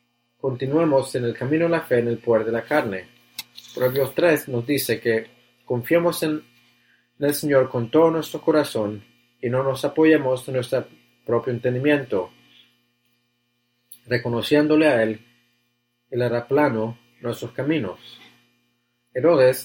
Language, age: English, 30-49